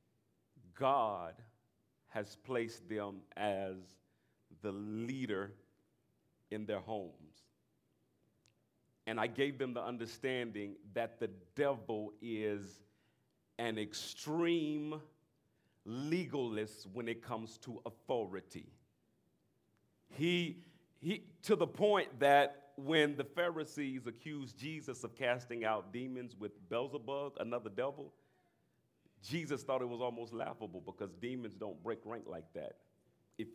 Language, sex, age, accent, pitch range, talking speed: English, male, 40-59, American, 110-145 Hz, 110 wpm